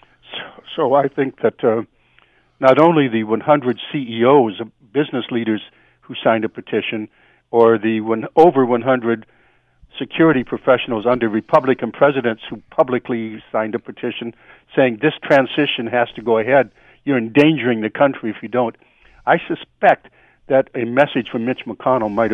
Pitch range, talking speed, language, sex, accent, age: 115-135 Hz, 150 wpm, English, male, American, 60-79